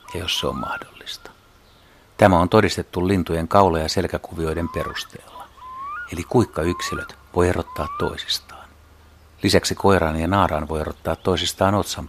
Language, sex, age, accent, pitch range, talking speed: Finnish, male, 60-79, native, 80-100 Hz, 130 wpm